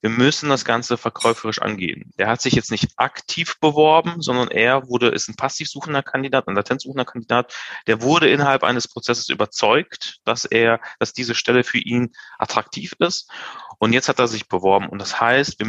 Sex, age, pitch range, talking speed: male, 30-49, 115-135 Hz, 185 wpm